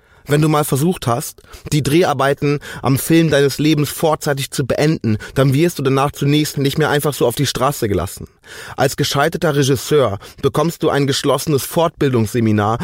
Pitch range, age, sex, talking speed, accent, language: 110-150 Hz, 30-49, male, 165 wpm, German, German